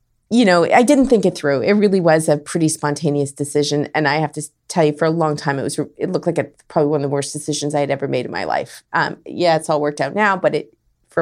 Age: 30-49